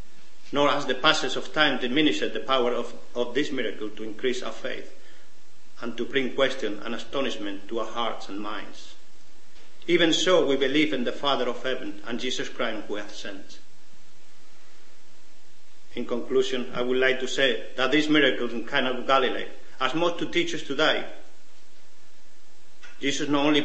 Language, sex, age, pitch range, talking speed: English, male, 50-69, 120-145 Hz, 170 wpm